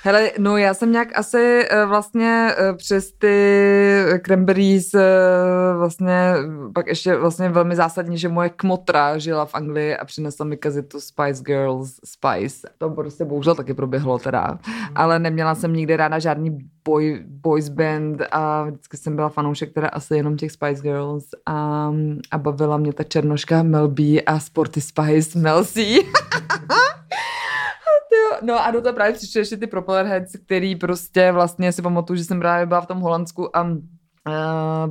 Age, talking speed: 20-39, 160 wpm